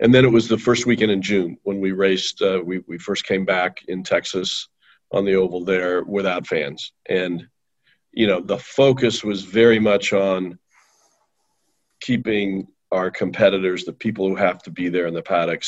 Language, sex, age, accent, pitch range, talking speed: English, male, 50-69, American, 90-105 Hz, 185 wpm